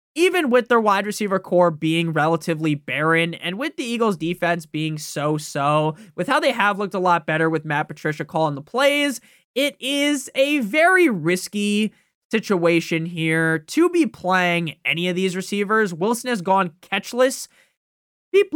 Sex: male